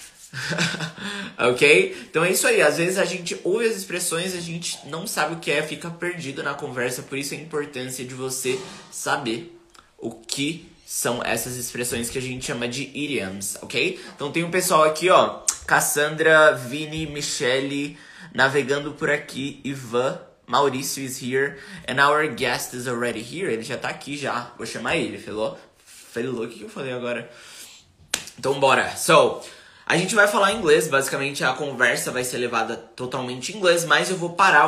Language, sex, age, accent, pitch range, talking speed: Portuguese, male, 20-39, Brazilian, 125-160 Hz, 175 wpm